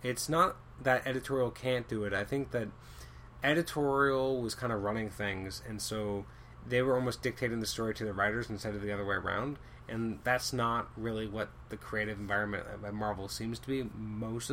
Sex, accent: male, American